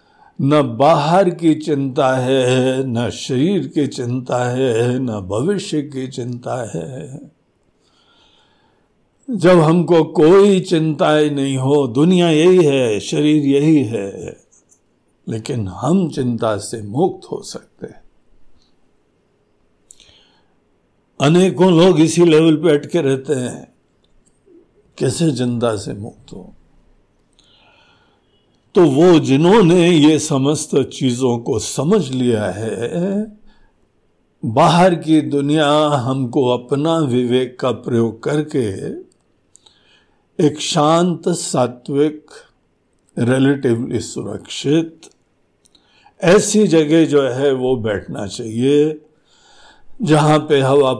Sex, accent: male, native